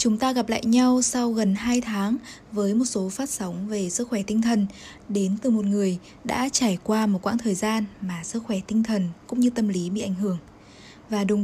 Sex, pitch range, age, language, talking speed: female, 195-240 Hz, 10-29, Vietnamese, 230 wpm